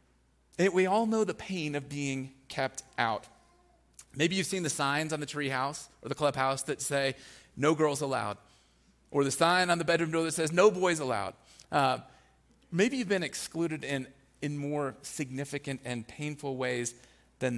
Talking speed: 170 wpm